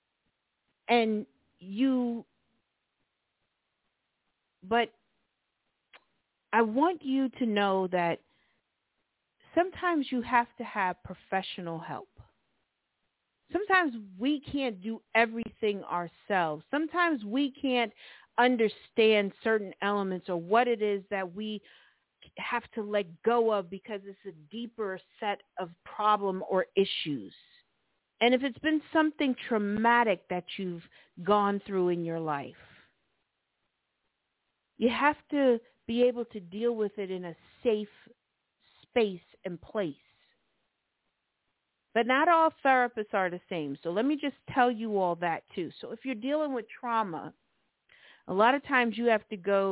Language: English